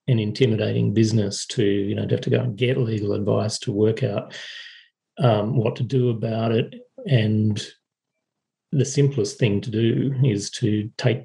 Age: 40-59